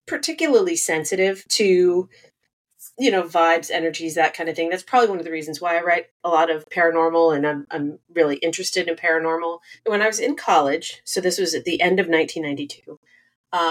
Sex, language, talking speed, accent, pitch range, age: female, English, 195 wpm, American, 160-195 Hz, 40-59